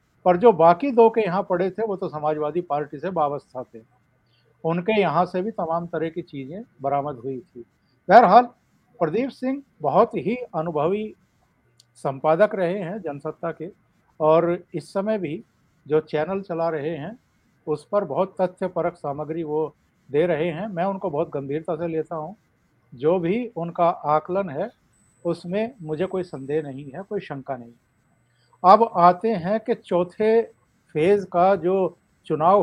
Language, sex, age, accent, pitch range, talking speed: English, male, 50-69, Indian, 155-195 Hz, 125 wpm